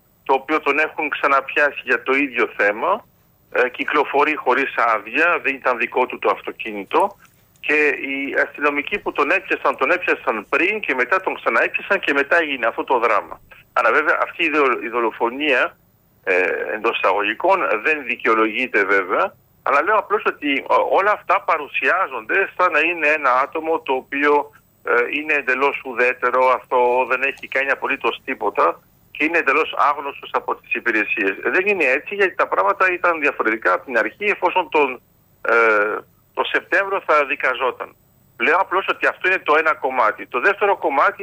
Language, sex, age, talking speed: Greek, male, 50-69, 160 wpm